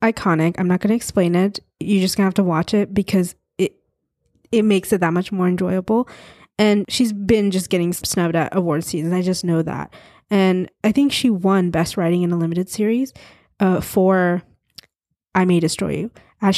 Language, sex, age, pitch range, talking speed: English, female, 20-39, 180-210 Hz, 190 wpm